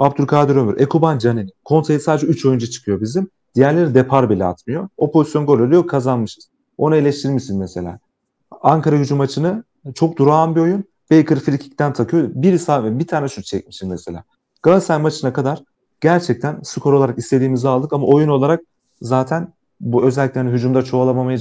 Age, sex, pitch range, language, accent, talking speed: 40-59, male, 120-150 Hz, Turkish, native, 150 wpm